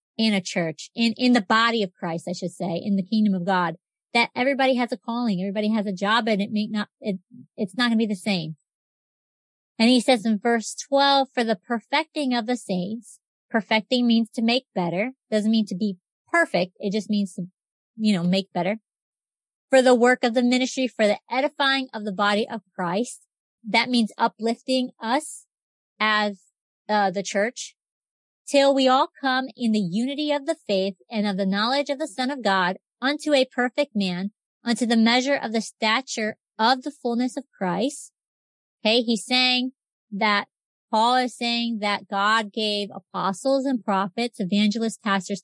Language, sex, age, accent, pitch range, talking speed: English, female, 30-49, American, 200-255 Hz, 185 wpm